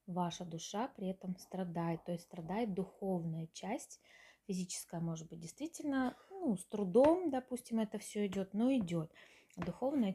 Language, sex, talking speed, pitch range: Russian, female, 140 wpm, 175-215 Hz